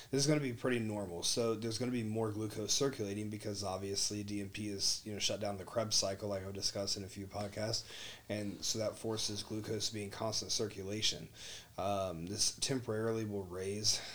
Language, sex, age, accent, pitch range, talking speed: English, male, 30-49, American, 95-110 Hz, 205 wpm